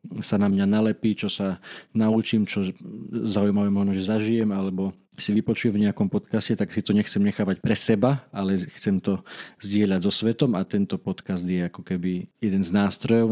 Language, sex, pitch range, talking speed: Slovak, male, 100-115 Hz, 180 wpm